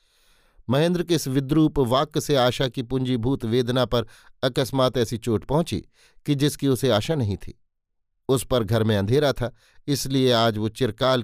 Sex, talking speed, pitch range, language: male, 165 wpm, 115-135 Hz, Hindi